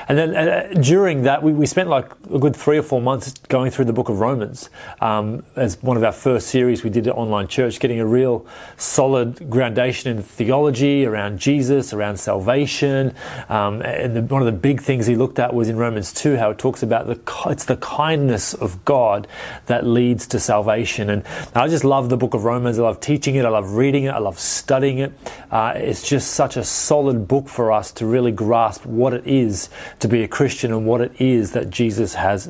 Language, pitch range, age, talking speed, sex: English, 115-140 Hz, 30-49, 220 wpm, male